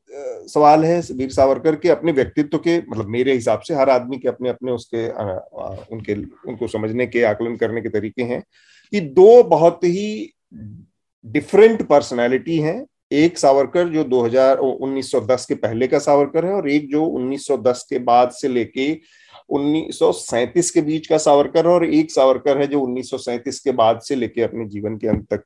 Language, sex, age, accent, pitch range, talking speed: Hindi, male, 40-59, native, 120-165 Hz, 175 wpm